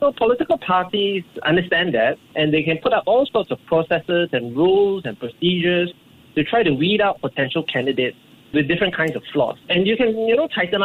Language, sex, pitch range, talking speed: English, male, 130-175 Hz, 200 wpm